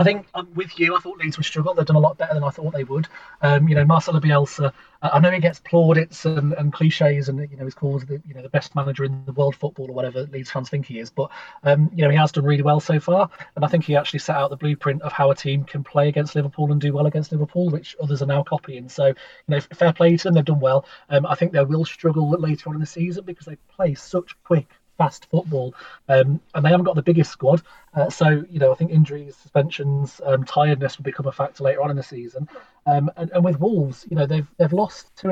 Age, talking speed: 30-49, 270 wpm